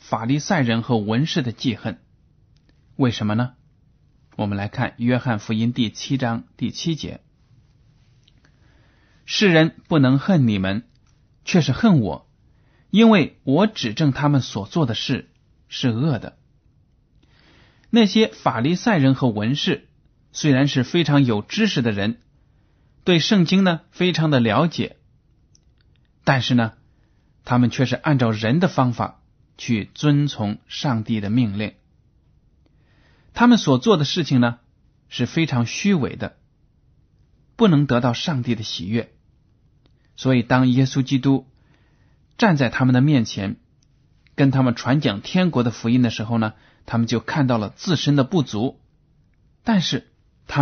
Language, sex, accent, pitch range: Chinese, male, native, 115-145 Hz